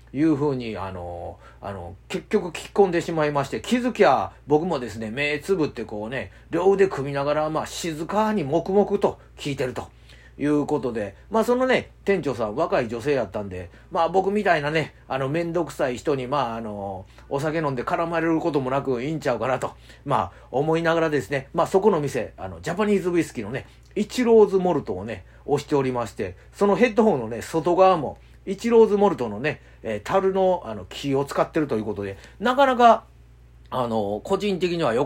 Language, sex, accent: Japanese, male, native